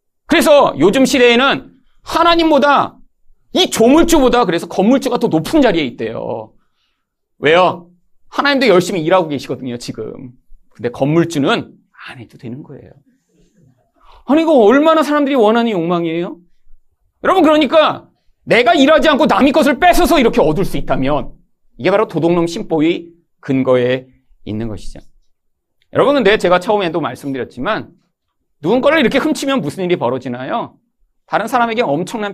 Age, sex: 40-59, male